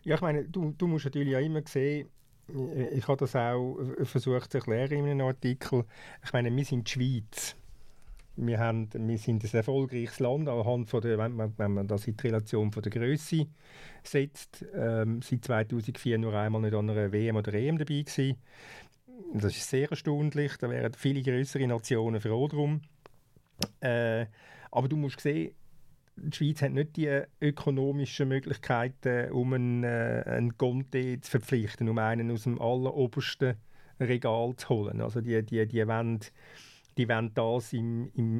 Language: German